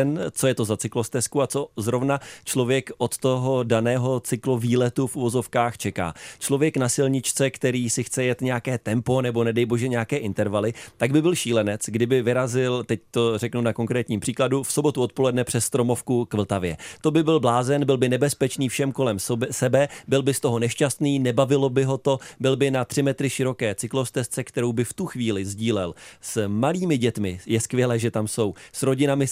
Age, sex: 30-49, male